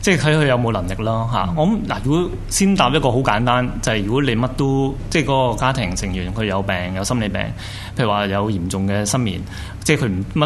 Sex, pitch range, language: male, 100-130 Hz, Chinese